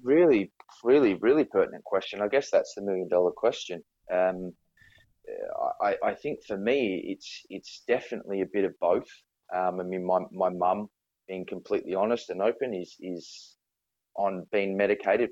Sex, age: male, 20-39